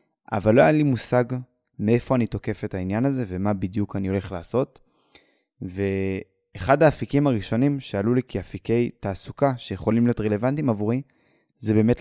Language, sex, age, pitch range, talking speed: Hebrew, male, 20-39, 105-130 Hz, 145 wpm